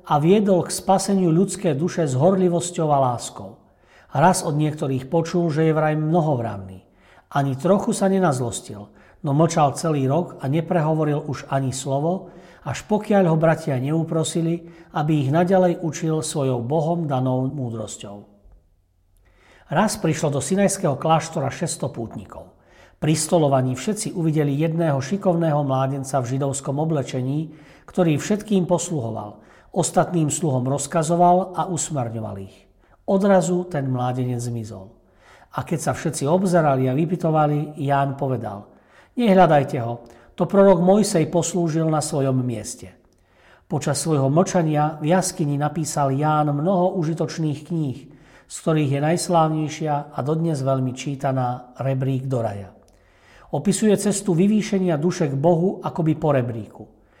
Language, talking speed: Slovak, 125 wpm